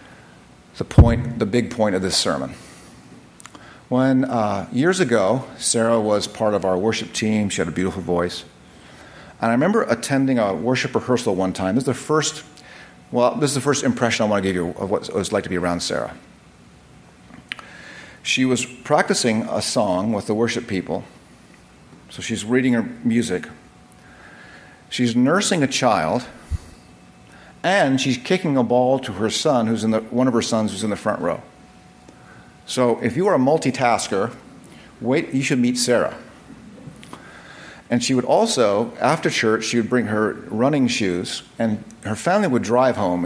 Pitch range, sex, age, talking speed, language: 95-125 Hz, male, 50-69, 170 wpm, English